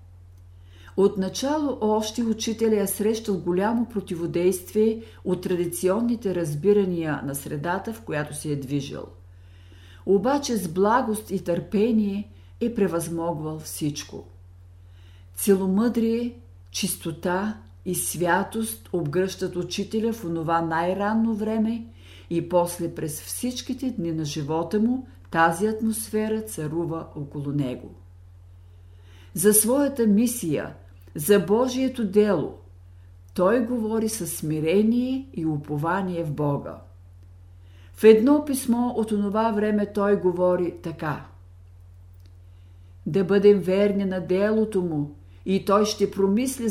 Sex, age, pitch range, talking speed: female, 50-69, 130-215 Hz, 105 wpm